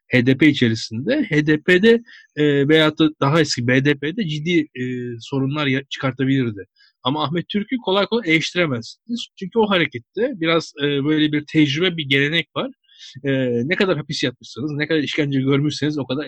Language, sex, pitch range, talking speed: Turkish, male, 130-170 Hz, 150 wpm